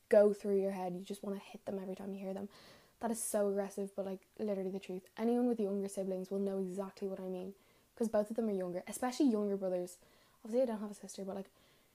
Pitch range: 210-245 Hz